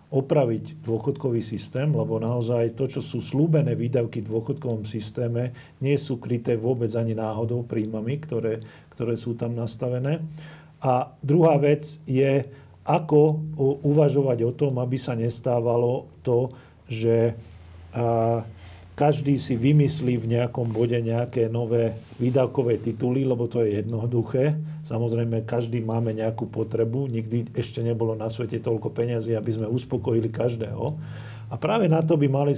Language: Slovak